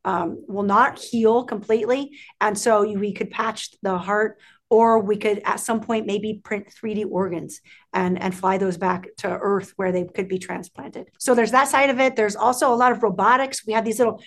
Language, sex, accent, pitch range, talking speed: English, female, American, 205-245 Hz, 210 wpm